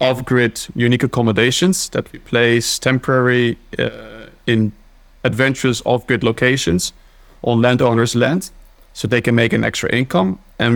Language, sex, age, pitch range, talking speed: English, male, 30-49, 110-125 Hz, 130 wpm